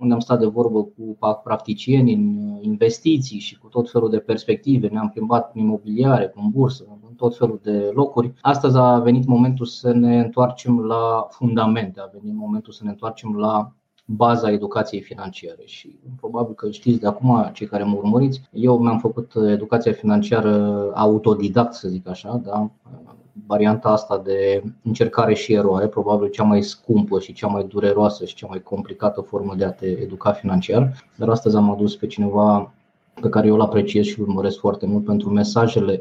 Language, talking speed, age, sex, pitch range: Romanian, 175 wpm, 20-39, male, 105-125 Hz